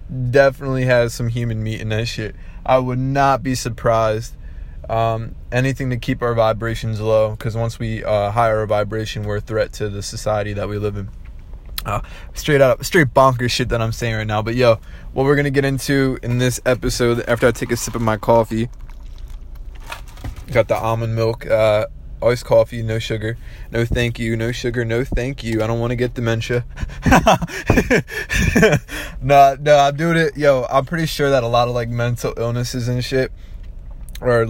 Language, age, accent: English, 20-39, American